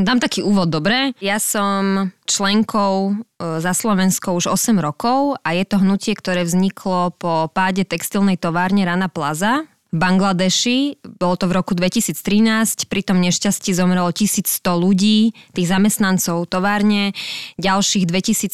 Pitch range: 175-200 Hz